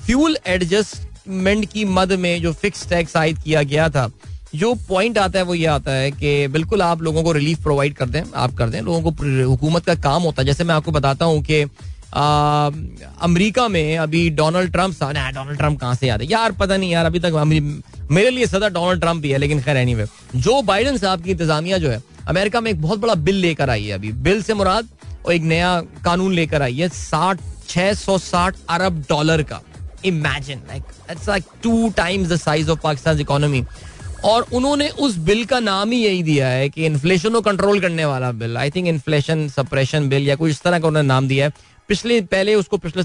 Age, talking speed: 20-39, 205 wpm